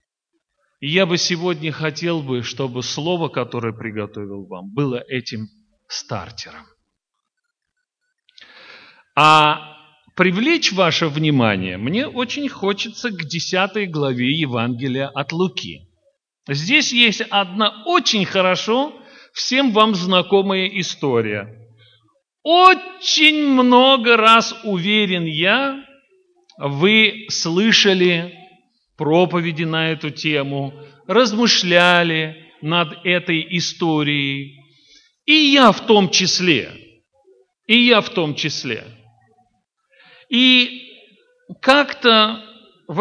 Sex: male